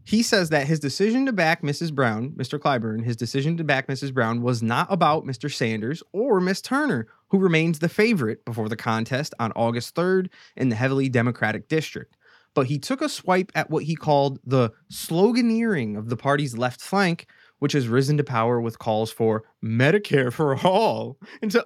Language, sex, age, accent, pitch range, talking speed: English, male, 20-39, American, 125-180 Hz, 190 wpm